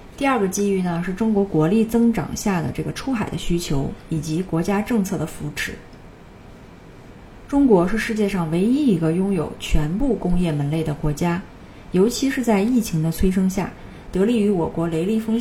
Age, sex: 30-49, female